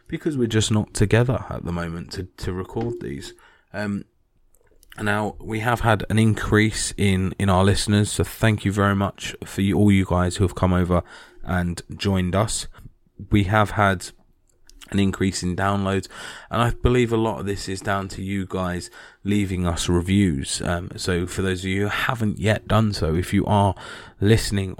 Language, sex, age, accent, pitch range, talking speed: English, male, 20-39, British, 90-110 Hz, 185 wpm